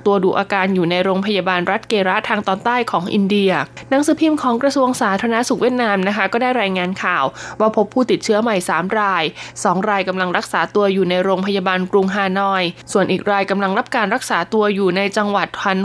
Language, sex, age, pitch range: Thai, female, 20-39, 190-240 Hz